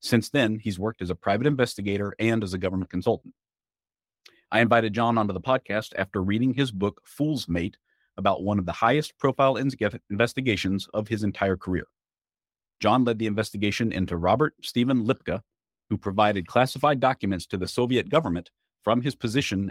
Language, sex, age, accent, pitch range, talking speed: English, male, 50-69, American, 95-120 Hz, 165 wpm